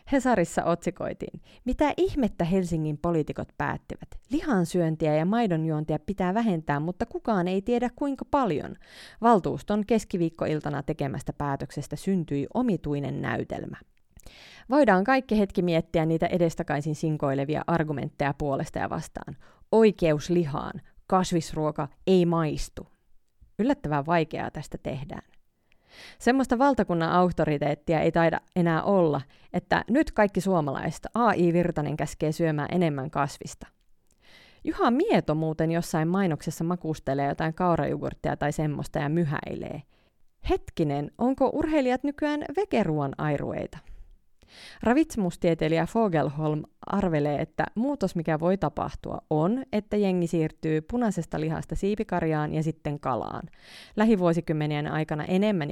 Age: 30-49